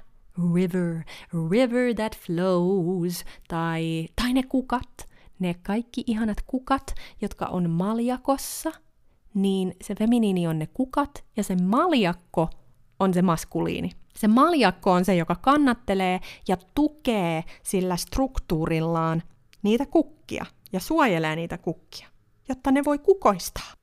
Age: 30-49